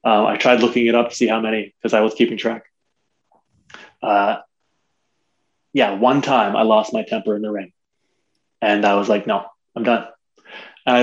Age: 20-39